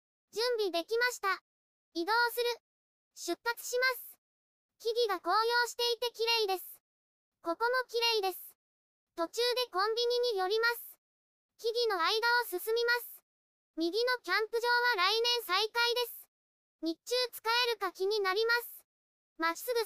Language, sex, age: Japanese, male, 20-39